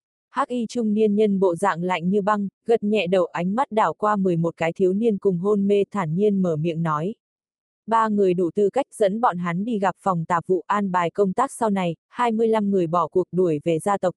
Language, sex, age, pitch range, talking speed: Vietnamese, female, 20-39, 180-215 Hz, 235 wpm